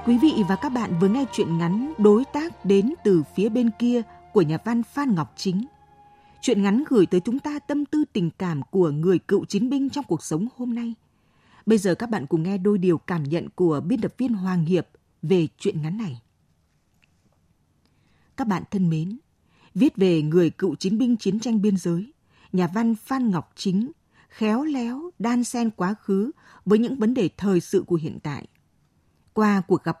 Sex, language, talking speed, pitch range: female, Vietnamese, 200 wpm, 175-240 Hz